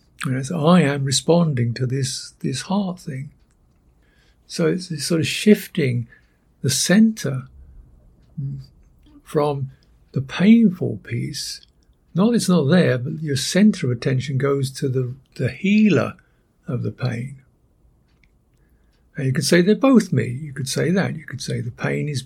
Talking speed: 155 wpm